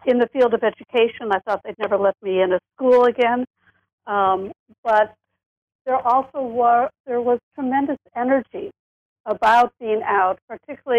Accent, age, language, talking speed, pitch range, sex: American, 60-79, English, 155 wpm, 205-255 Hz, female